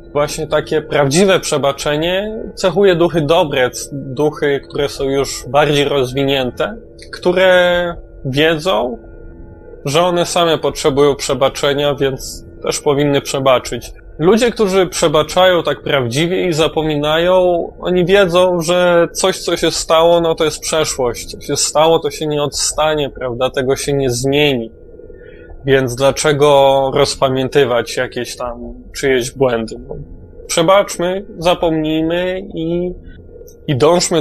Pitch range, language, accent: 135-175 Hz, Polish, native